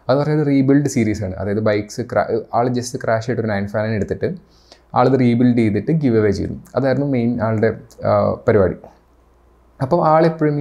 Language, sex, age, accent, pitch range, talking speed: Malayalam, male, 30-49, native, 110-130 Hz, 155 wpm